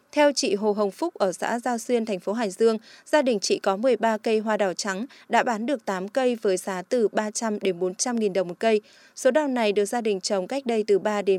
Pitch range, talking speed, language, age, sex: 200-260 Hz, 255 wpm, Vietnamese, 20-39, female